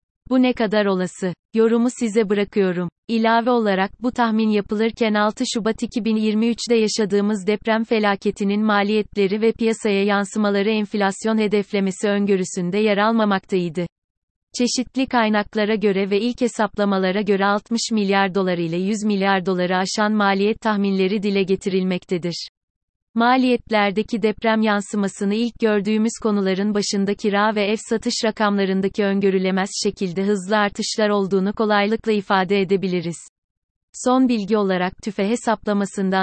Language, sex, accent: Turkish, female, native